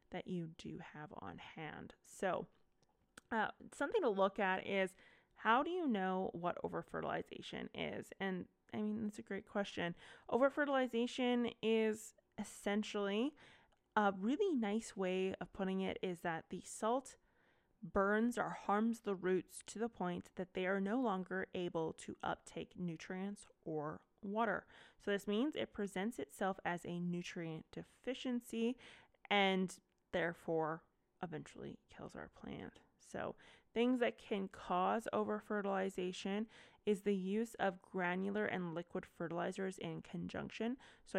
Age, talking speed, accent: 20-39, 140 wpm, American